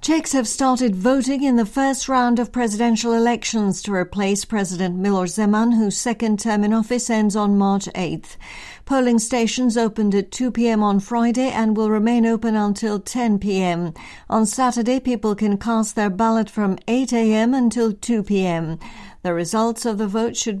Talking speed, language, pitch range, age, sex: 170 wpm, English, 185-230 Hz, 60-79, female